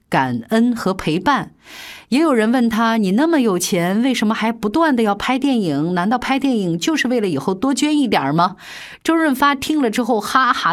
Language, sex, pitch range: Chinese, female, 170-250 Hz